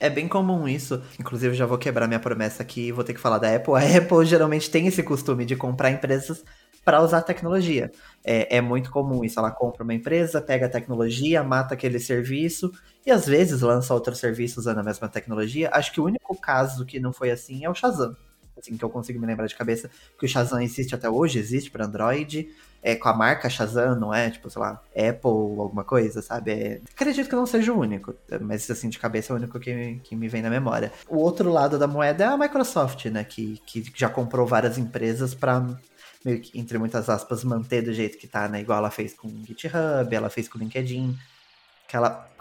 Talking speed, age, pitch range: 220 wpm, 20-39, 115-145 Hz